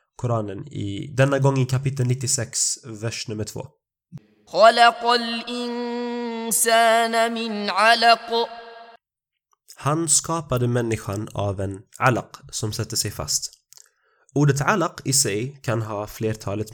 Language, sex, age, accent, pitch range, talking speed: Swedish, male, 20-39, native, 110-145 Hz, 95 wpm